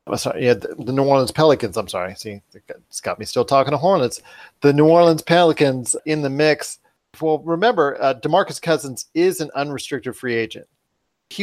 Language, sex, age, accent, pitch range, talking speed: English, male, 40-59, American, 115-145 Hz, 185 wpm